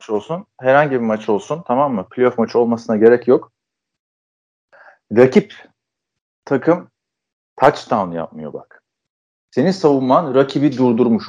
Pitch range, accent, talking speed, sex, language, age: 125-175 Hz, native, 110 wpm, male, Turkish, 40-59